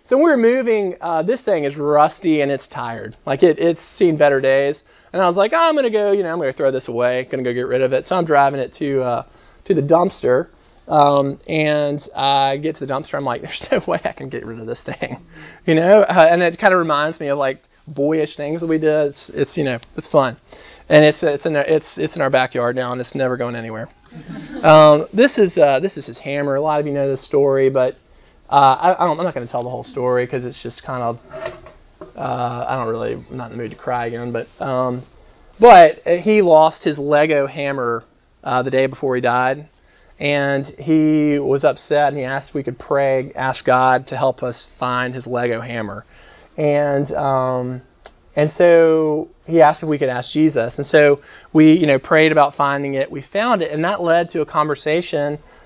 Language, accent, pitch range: English, American, 130-160 Hz